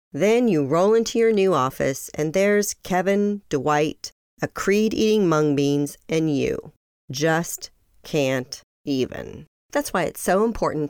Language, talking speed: English, 140 wpm